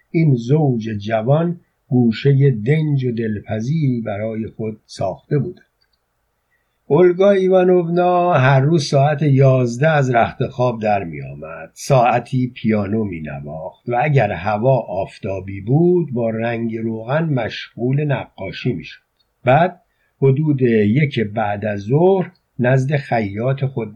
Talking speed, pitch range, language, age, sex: 120 wpm, 110-145 Hz, Persian, 50-69, male